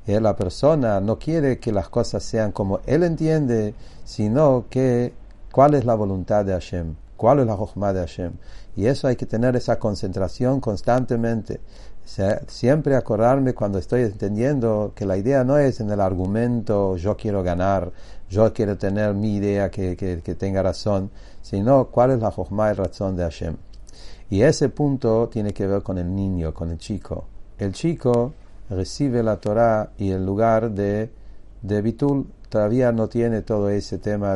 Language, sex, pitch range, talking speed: English, male, 95-120 Hz, 175 wpm